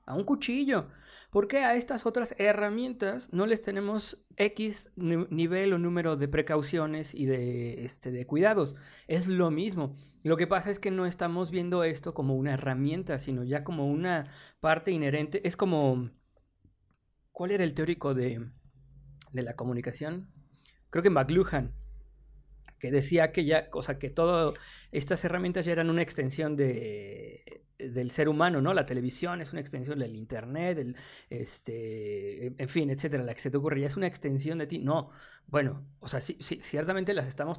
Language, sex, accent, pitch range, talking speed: Spanish, male, Mexican, 135-180 Hz, 175 wpm